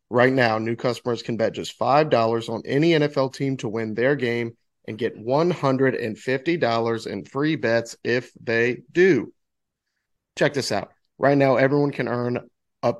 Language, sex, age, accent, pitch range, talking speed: English, male, 30-49, American, 115-135 Hz, 155 wpm